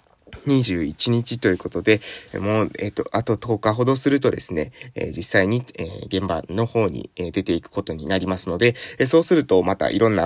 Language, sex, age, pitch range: Japanese, male, 20-39, 95-135 Hz